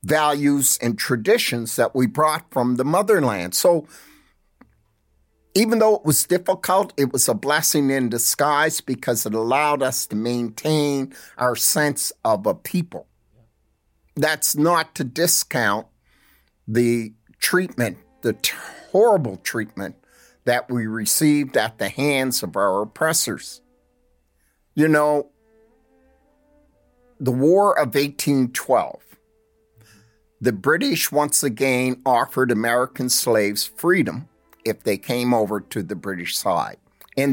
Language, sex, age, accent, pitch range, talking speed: English, male, 50-69, American, 115-155 Hz, 115 wpm